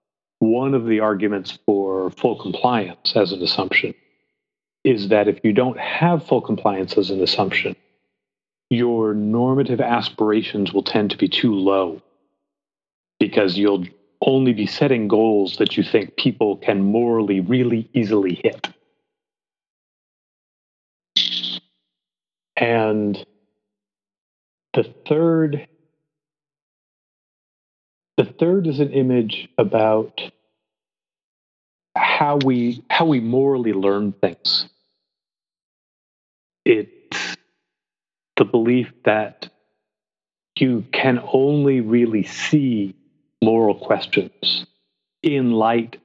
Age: 40-59